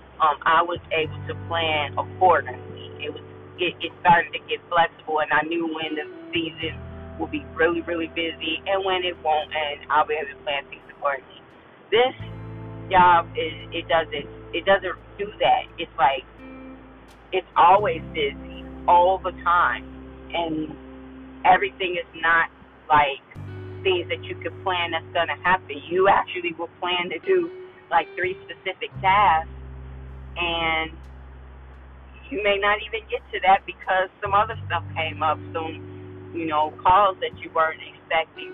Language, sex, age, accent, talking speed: English, female, 30-49, American, 155 wpm